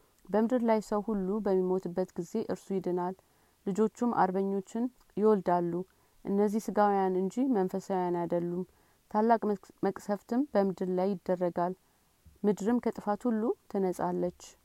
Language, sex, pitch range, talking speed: Amharic, female, 185-210 Hz, 100 wpm